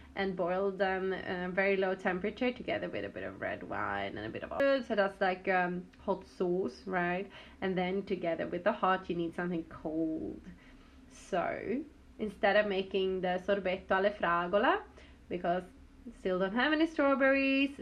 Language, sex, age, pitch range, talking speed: English, female, 20-39, 190-245 Hz, 175 wpm